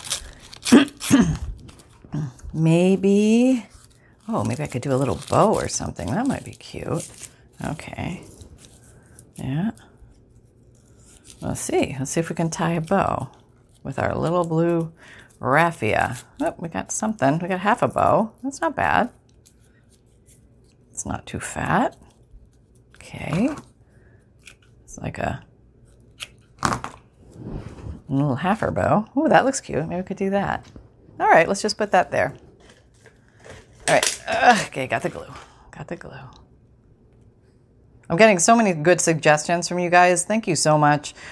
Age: 40-59